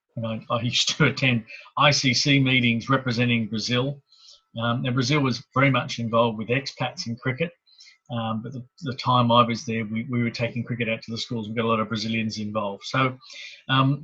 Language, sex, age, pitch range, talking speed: English, male, 40-59, 115-135 Hz, 190 wpm